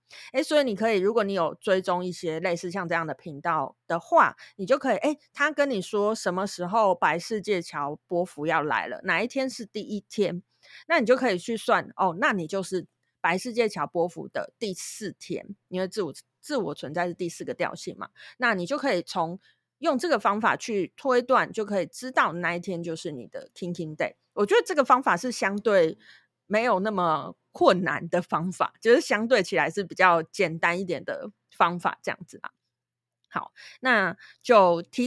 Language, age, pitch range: Chinese, 30-49, 175-245 Hz